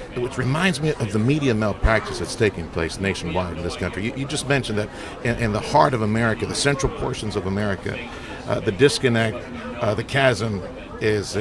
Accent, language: American, English